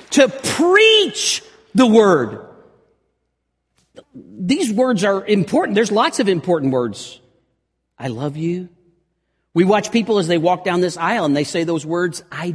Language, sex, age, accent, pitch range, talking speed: English, male, 50-69, American, 105-170 Hz, 150 wpm